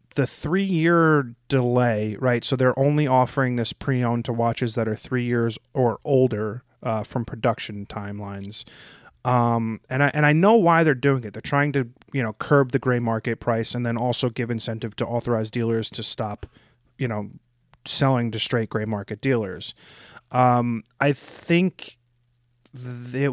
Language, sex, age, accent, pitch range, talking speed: English, male, 30-49, American, 115-140 Hz, 165 wpm